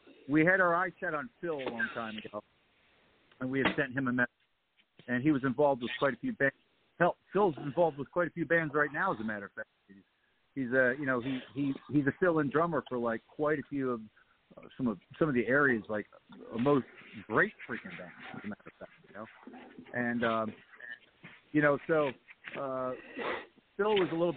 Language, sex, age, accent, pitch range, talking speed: English, male, 50-69, American, 120-155 Hz, 220 wpm